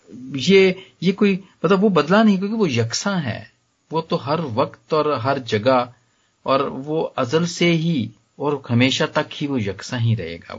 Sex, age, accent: male, 40-59, native